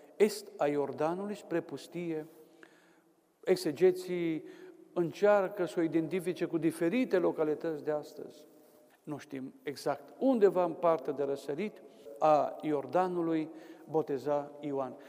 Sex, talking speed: male, 105 wpm